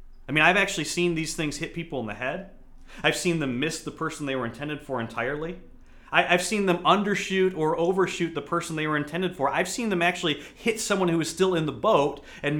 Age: 30-49